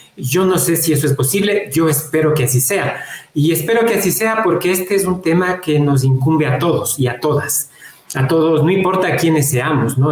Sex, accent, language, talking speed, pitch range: male, Mexican, Spanish, 220 wpm, 135-180 Hz